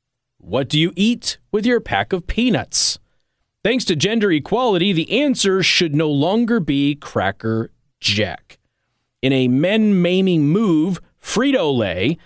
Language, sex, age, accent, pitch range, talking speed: English, male, 30-49, American, 145-215 Hz, 125 wpm